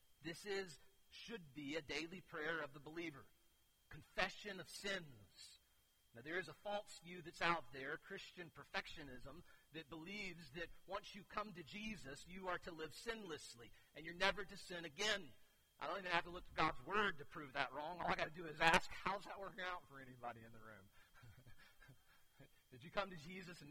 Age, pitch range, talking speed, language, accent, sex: 40-59, 115-185 Hz, 195 wpm, English, American, male